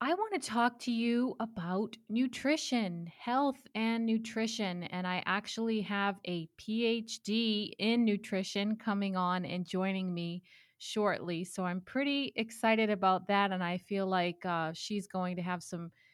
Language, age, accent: English, 30-49, American